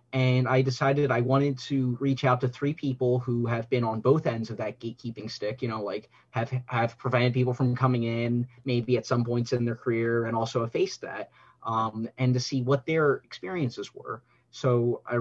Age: 30-49